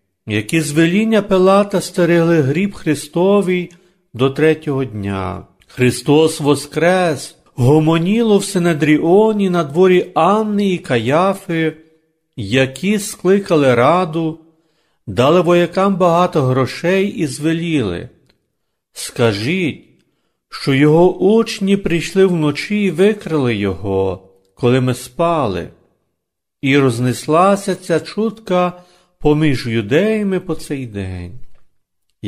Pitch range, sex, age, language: 125-180 Hz, male, 50-69, Ukrainian